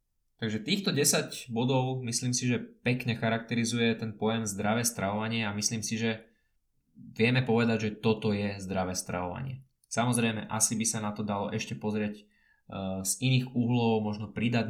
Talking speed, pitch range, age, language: 160 wpm, 105-120 Hz, 20-39, Slovak